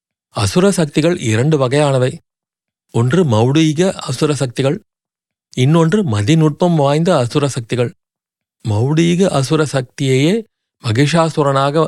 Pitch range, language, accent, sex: 125-165 Hz, Tamil, native, male